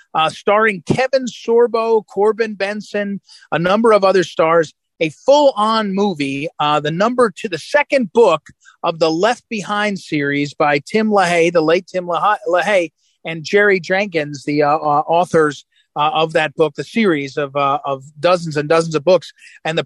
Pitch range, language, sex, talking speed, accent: 150-210 Hz, English, male, 175 wpm, American